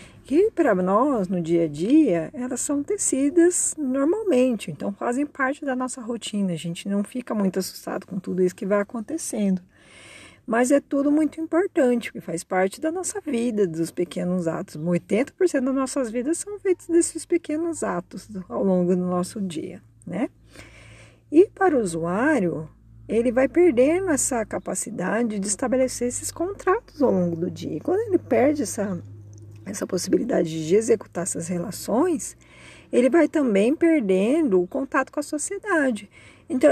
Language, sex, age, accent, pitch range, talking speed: Portuguese, female, 40-59, Brazilian, 180-280 Hz, 155 wpm